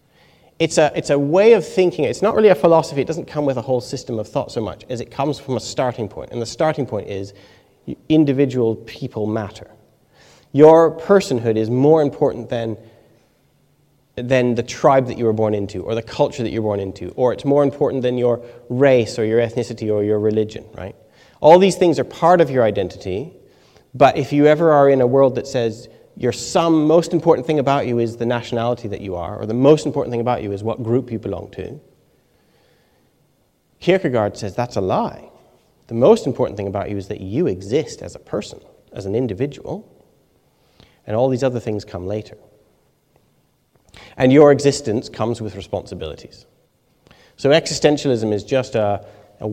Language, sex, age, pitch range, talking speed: English, male, 30-49, 110-145 Hz, 195 wpm